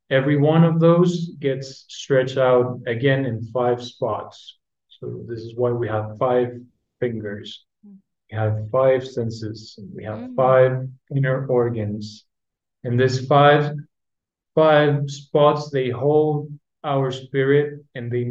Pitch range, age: 115-140 Hz, 30-49